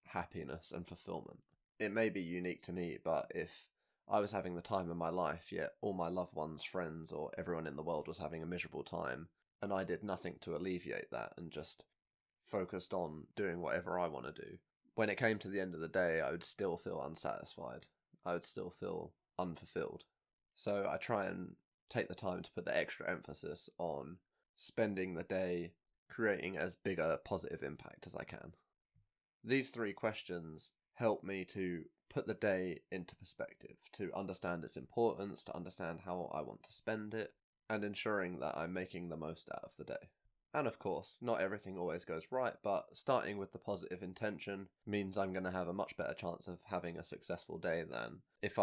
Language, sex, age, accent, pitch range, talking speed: English, male, 20-39, British, 85-110 Hz, 195 wpm